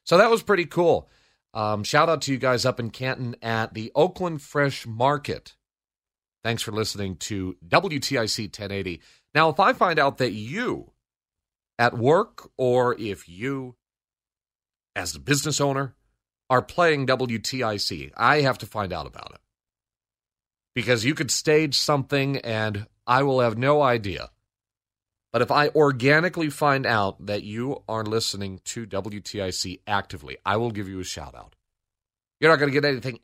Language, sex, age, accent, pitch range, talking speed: English, male, 40-59, American, 100-140 Hz, 155 wpm